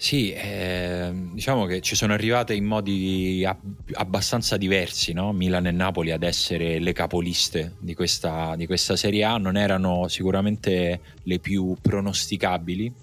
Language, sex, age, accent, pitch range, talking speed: Italian, male, 20-39, native, 85-100 Hz, 145 wpm